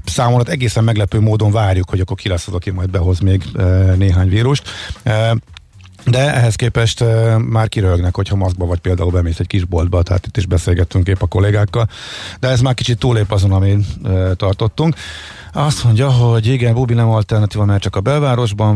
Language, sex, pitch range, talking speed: Hungarian, male, 95-120 Hz, 190 wpm